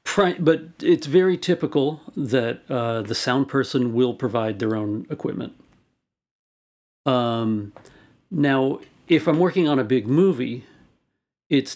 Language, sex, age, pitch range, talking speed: English, male, 50-69, 115-145 Hz, 120 wpm